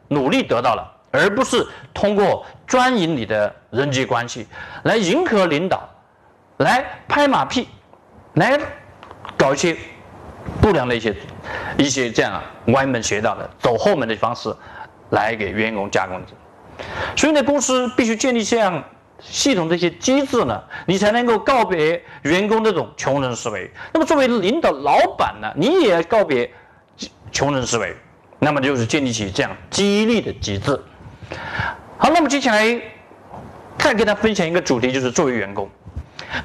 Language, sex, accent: Chinese, male, native